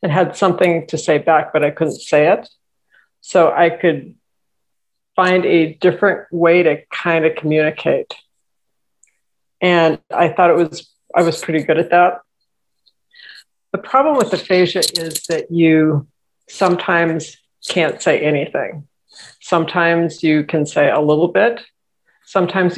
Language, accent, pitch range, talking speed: English, American, 160-185 Hz, 135 wpm